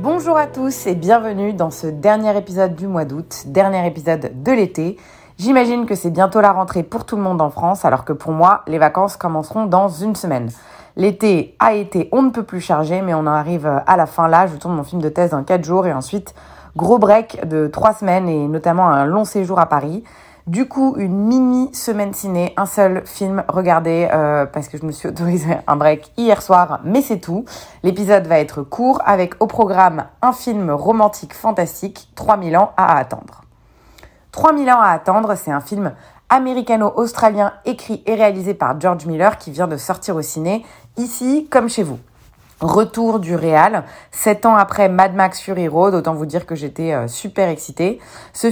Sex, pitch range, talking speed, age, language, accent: female, 160-210 Hz, 195 wpm, 30-49, French, French